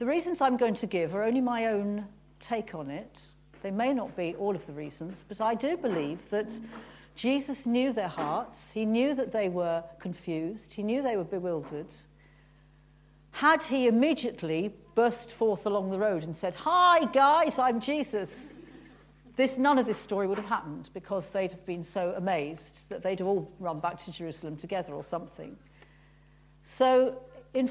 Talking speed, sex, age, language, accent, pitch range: 175 wpm, female, 50-69, English, British, 165-230 Hz